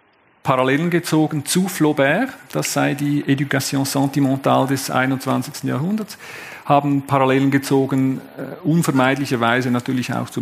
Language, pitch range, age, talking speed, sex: German, 125-160 Hz, 50-69, 110 wpm, male